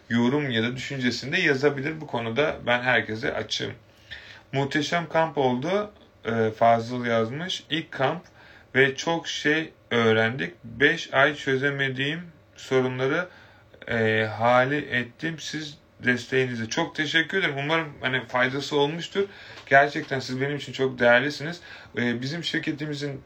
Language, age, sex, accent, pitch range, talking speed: Turkish, 30-49, male, native, 120-145 Hz, 115 wpm